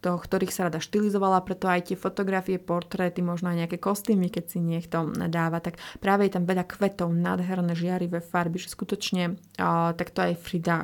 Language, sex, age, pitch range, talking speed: Slovak, female, 30-49, 175-205 Hz, 175 wpm